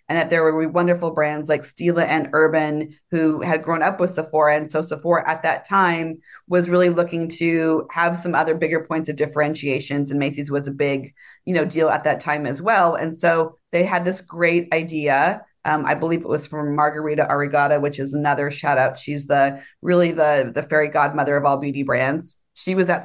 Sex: female